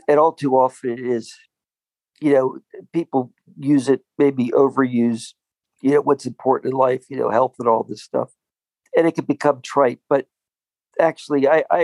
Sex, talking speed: male, 175 wpm